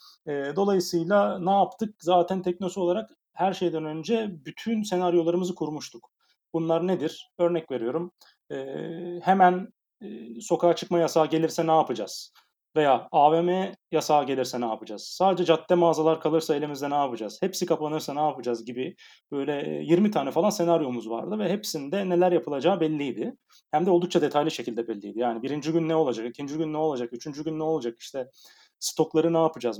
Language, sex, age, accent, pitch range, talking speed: Turkish, male, 40-59, native, 140-175 Hz, 155 wpm